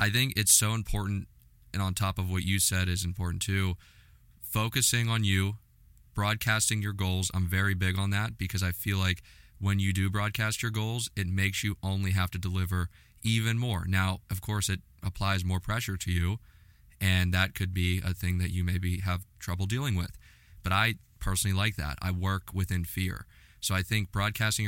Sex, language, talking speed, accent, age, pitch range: male, English, 195 wpm, American, 20-39, 90-105 Hz